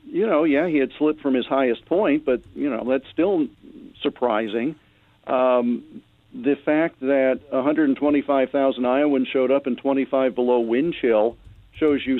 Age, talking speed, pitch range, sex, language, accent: 50-69, 150 wpm, 125-165 Hz, male, English, American